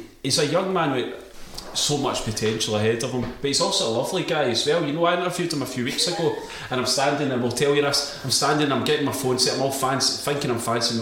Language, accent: English, British